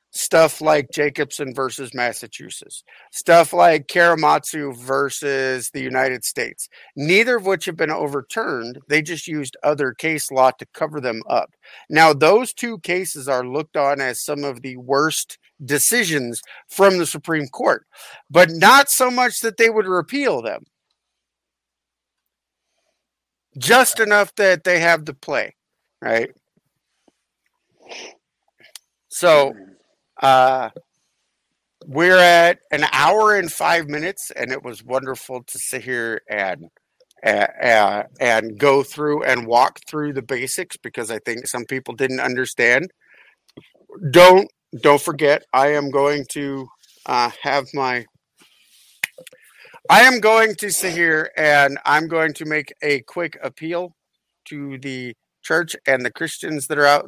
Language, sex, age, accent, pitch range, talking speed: English, male, 50-69, American, 135-175 Hz, 135 wpm